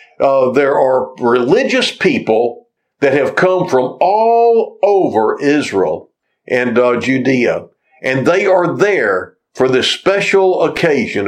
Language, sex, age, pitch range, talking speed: English, male, 60-79, 130-210 Hz, 120 wpm